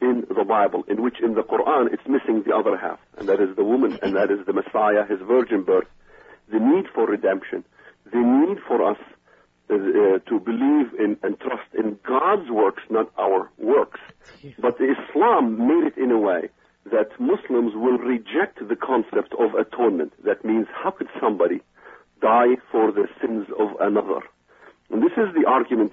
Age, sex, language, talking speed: 50-69, male, English, 180 wpm